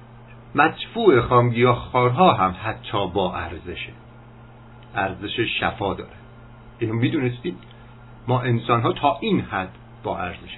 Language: Persian